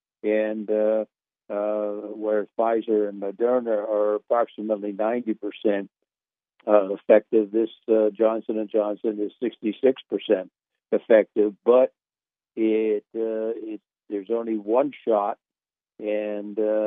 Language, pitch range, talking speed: English, 105-110 Hz, 115 wpm